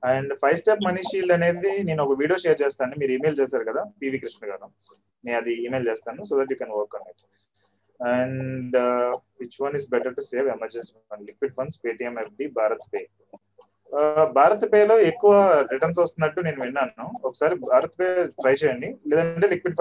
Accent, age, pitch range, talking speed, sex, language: native, 30-49, 125-185 Hz, 165 wpm, male, Telugu